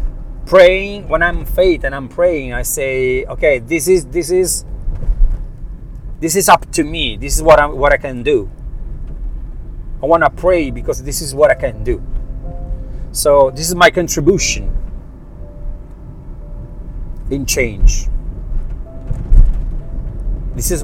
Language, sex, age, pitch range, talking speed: Italian, male, 40-59, 110-165 Hz, 135 wpm